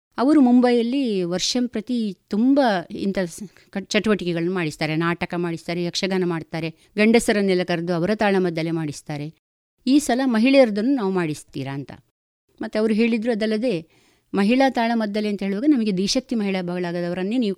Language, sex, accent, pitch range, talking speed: Kannada, female, native, 170-220 Hz, 125 wpm